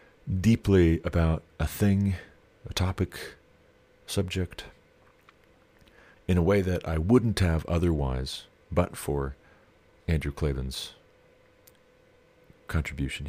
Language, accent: English, American